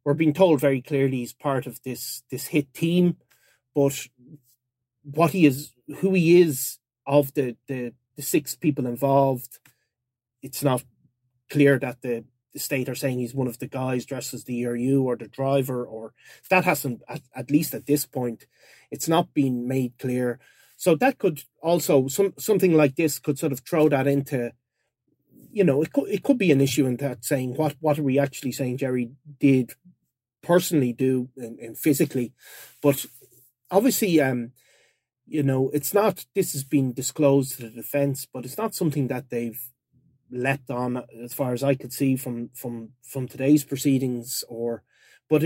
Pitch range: 125-150 Hz